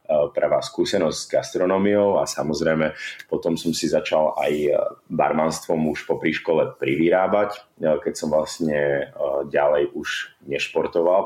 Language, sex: Slovak, male